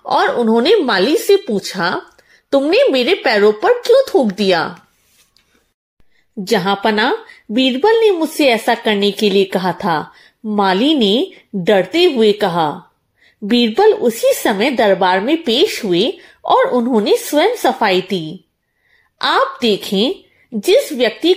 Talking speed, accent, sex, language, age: 125 wpm, native, female, Hindi, 30-49